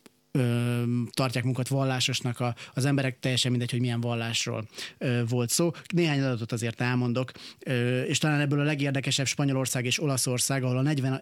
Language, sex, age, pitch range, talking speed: Hungarian, male, 30-49, 120-140 Hz, 160 wpm